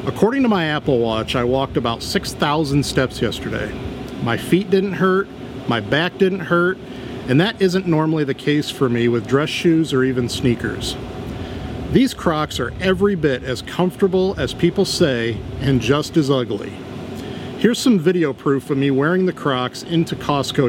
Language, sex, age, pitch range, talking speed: English, male, 50-69, 125-160 Hz, 170 wpm